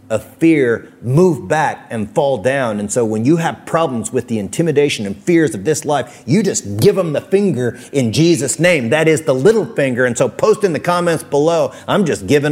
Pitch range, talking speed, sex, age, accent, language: 115-155 Hz, 215 wpm, male, 30-49, American, English